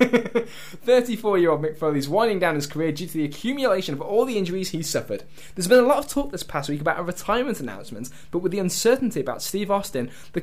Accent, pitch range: British, 145-190 Hz